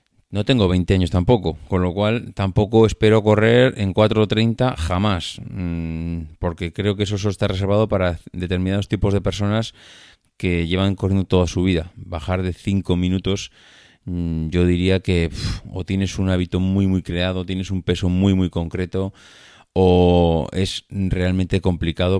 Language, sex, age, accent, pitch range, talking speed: Spanish, male, 30-49, Spanish, 85-100 Hz, 150 wpm